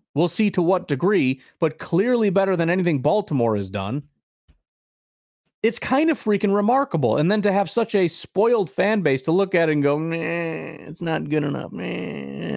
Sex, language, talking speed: male, English, 180 wpm